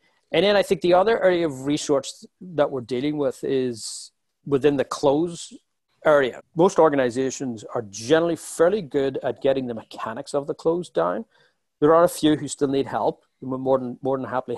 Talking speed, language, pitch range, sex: 185 wpm, English, 125-155 Hz, male